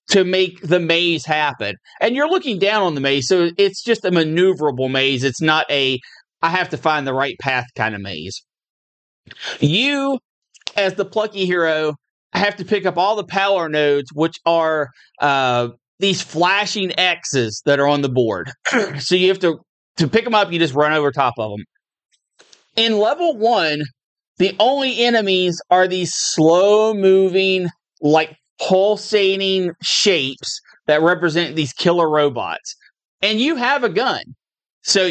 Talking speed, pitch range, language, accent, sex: 160 wpm, 150-195 Hz, English, American, male